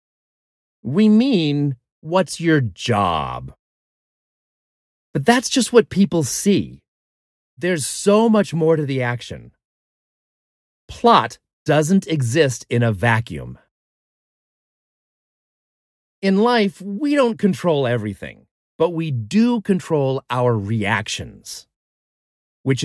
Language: English